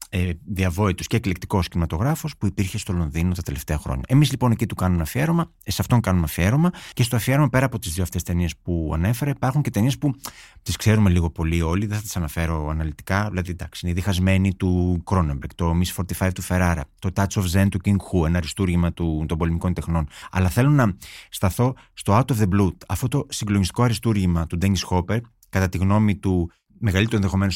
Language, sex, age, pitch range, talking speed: Greek, male, 30-49, 90-115 Hz, 200 wpm